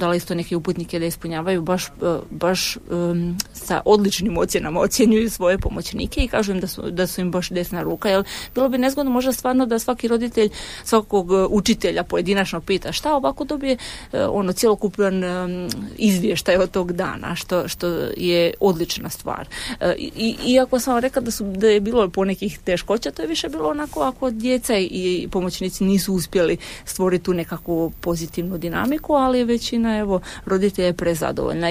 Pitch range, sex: 175-220 Hz, female